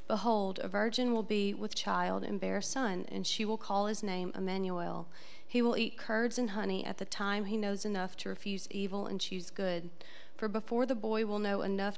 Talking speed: 215 wpm